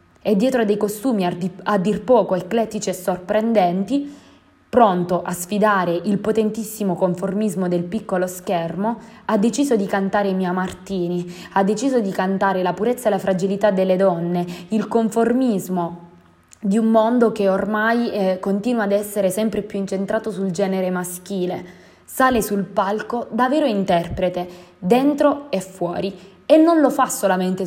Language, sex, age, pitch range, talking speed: Italian, female, 20-39, 185-220 Hz, 145 wpm